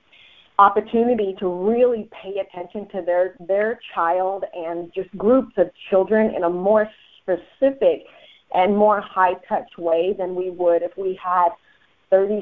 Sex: female